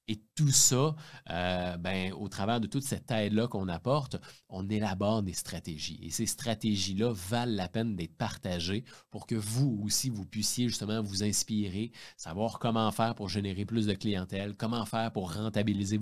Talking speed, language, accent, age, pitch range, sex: 170 wpm, French, Canadian, 30-49, 95-115 Hz, male